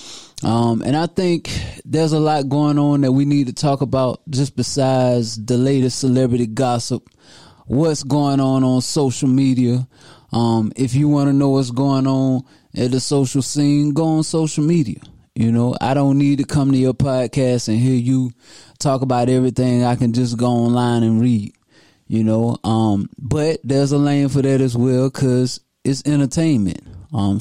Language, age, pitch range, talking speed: English, 20-39, 120-140 Hz, 180 wpm